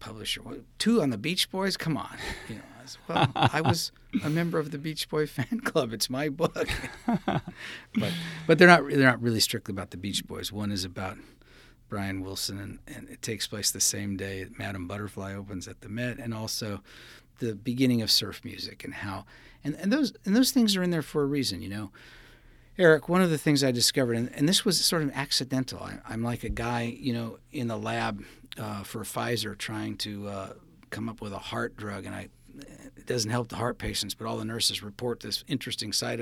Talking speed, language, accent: 215 wpm, English, American